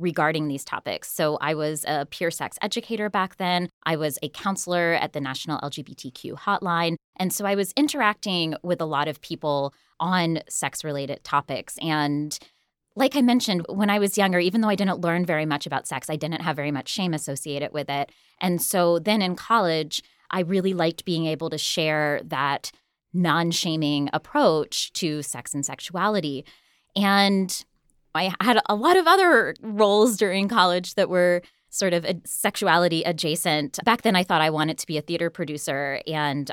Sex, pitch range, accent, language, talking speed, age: female, 150-195 Hz, American, English, 175 wpm, 20-39